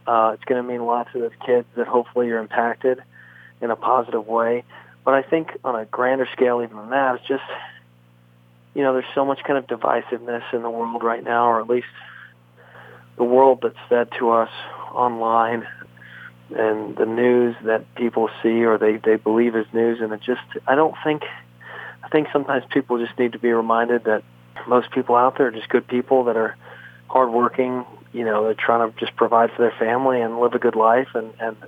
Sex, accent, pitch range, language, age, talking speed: male, American, 110-120 Hz, English, 40-59, 210 wpm